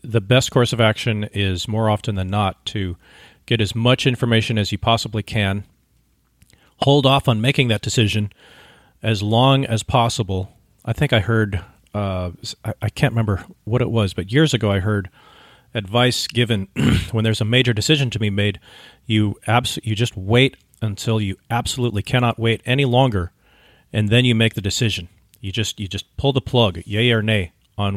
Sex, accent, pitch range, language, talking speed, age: male, American, 100-120 Hz, English, 180 wpm, 40-59